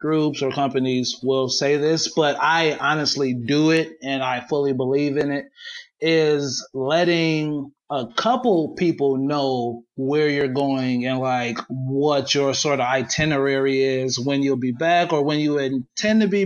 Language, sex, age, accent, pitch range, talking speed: English, male, 30-49, American, 135-160 Hz, 160 wpm